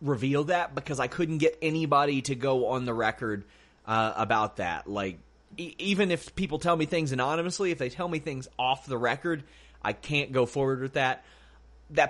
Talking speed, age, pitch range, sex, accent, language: 195 wpm, 30-49, 110-155 Hz, male, American, English